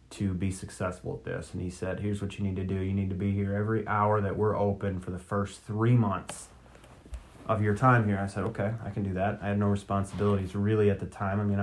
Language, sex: English, male